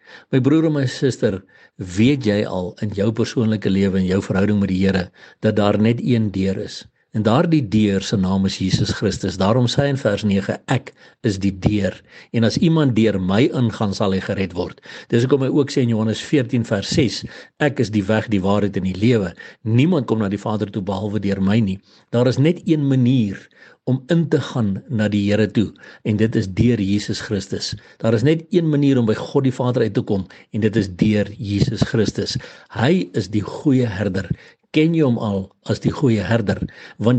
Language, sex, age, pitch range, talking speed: English, male, 60-79, 100-130 Hz, 215 wpm